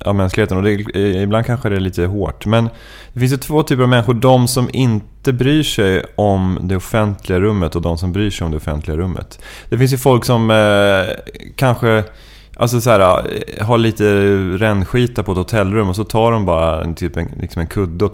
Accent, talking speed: Swedish, 200 wpm